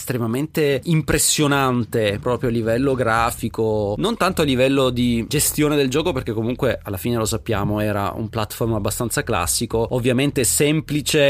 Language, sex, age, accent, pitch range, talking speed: Italian, male, 30-49, native, 115-150 Hz, 145 wpm